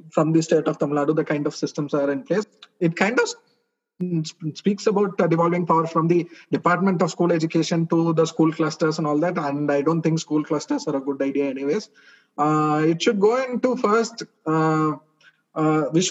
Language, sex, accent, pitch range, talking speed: English, male, Indian, 150-185 Hz, 195 wpm